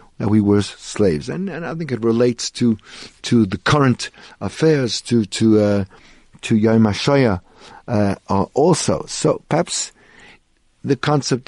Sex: male